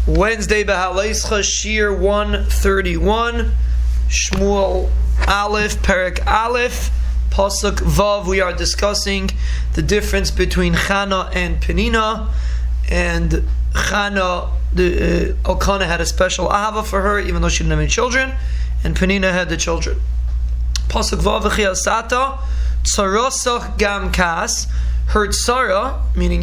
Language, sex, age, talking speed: English, male, 20-39, 110 wpm